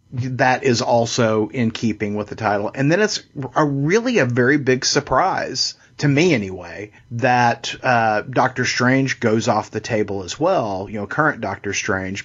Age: 40-59